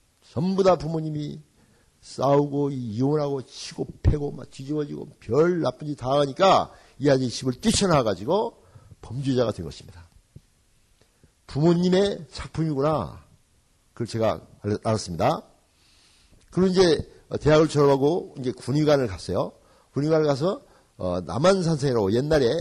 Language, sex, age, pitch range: Korean, male, 50-69, 105-155 Hz